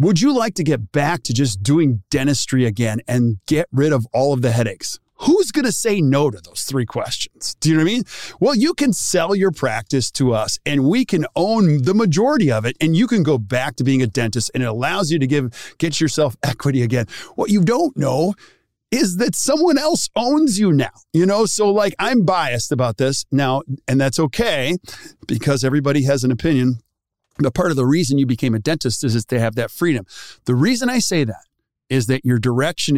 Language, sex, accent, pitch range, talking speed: English, male, American, 125-175 Hz, 220 wpm